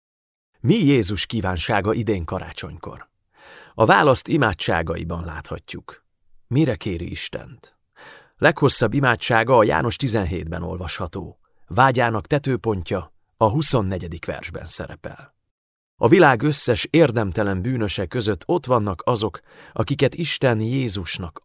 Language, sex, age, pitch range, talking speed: Hungarian, male, 30-49, 95-130 Hz, 100 wpm